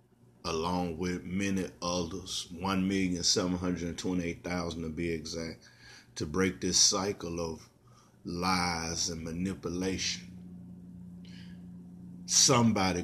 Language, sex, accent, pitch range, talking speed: English, male, American, 90-100 Hz, 80 wpm